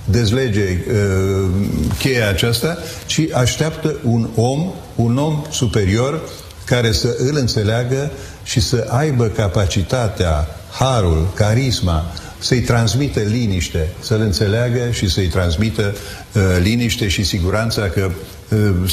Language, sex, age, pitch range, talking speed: Romanian, male, 50-69, 95-120 Hz, 110 wpm